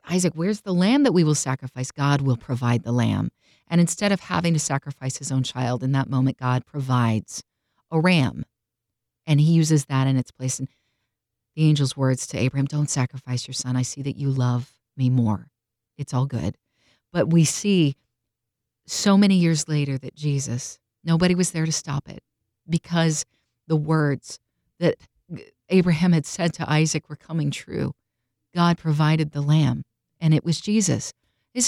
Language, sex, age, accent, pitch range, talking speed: English, female, 40-59, American, 125-170 Hz, 175 wpm